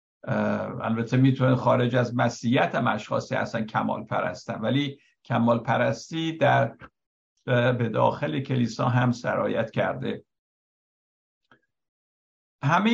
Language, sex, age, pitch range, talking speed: Persian, male, 60-79, 115-140 Hz, 95 wpm